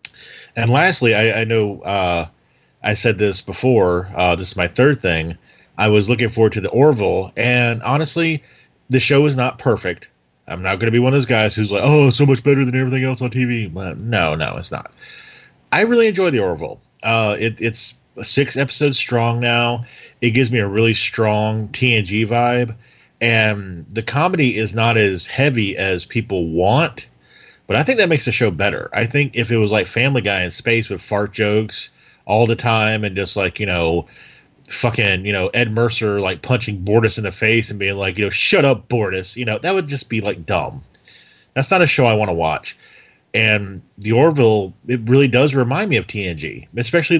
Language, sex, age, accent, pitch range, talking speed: English, male, 30-49, American, 105-125 Hz, 205 wpm